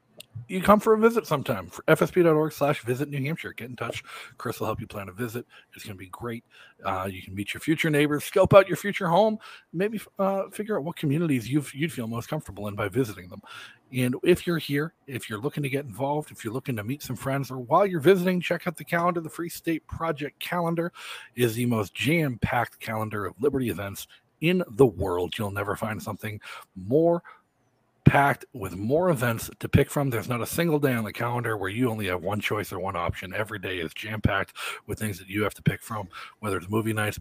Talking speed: 230 wpm